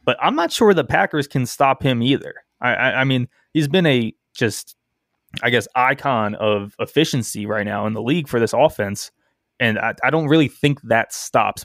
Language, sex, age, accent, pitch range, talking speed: English, male, 20-39, American, 110-140 Hz, 200 wpm